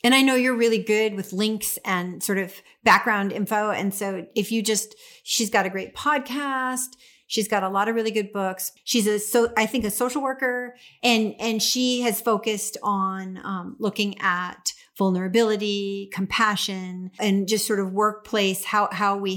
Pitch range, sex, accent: 185-215 Hz, female, American